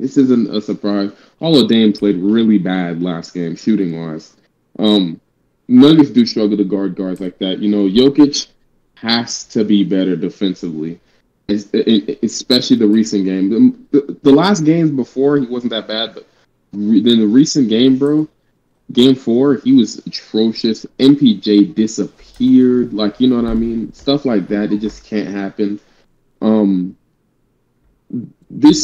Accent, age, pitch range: American, 20-39, 100-125 Hz